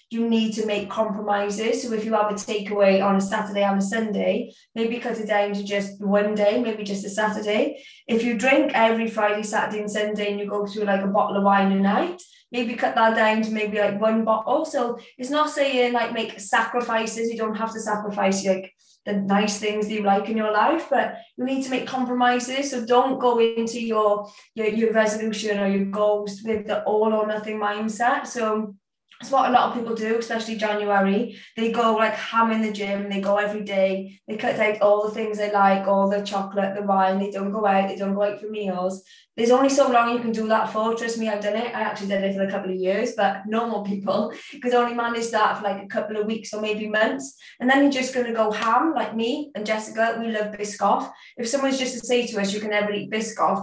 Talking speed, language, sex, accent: 240 wpm, English, female, British